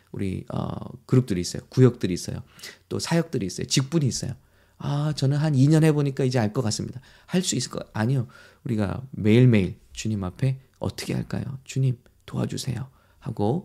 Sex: male